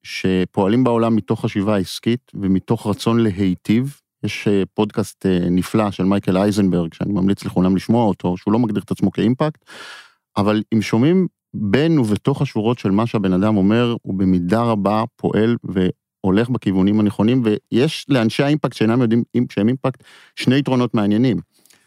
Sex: male